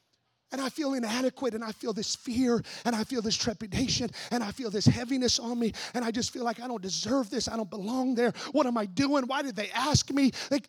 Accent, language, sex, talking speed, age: American, English, male, 245 wpm, 30-49